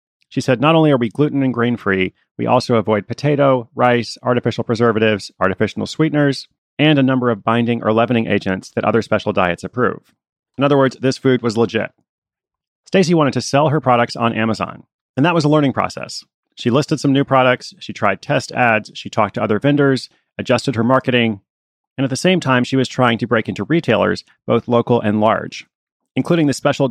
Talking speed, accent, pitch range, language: 200 wpm, American, 115-140 Hz, English